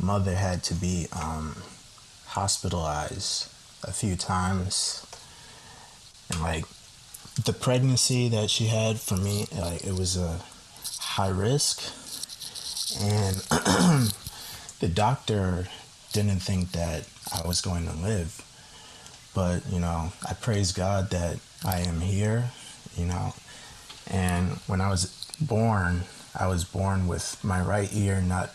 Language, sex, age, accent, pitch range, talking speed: English, male, 20-39, American, 90-105 Hz, 125 wpm